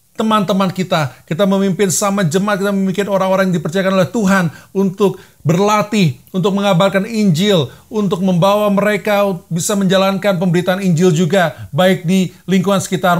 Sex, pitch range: male, 175-195 Hz